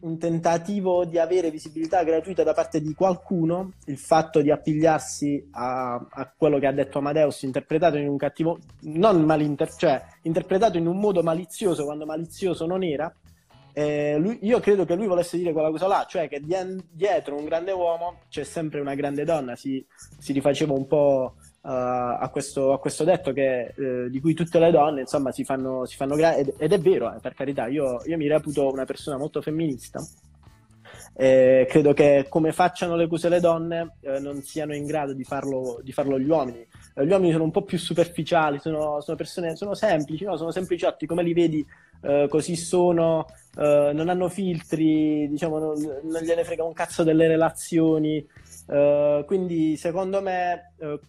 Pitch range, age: 140-170 Hz, 20-39